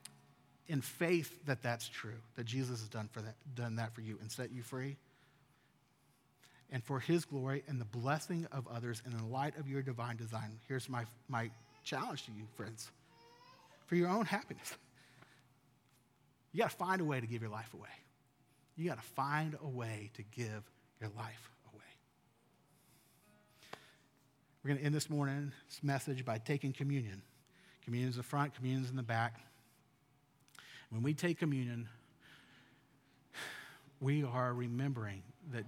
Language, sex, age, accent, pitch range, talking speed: English, male, 40-59, American, 115-140 Hz, 160 wpm